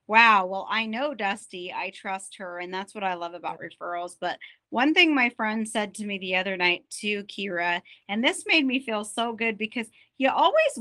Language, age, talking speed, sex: English, 30-49, 210 wpm, female